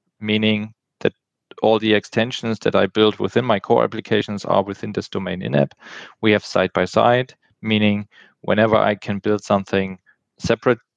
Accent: German